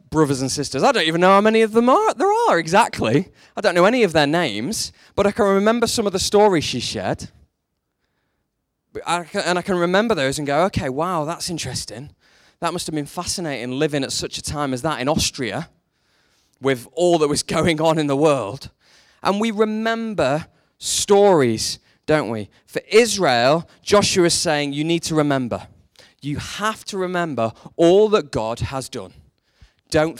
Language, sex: English, male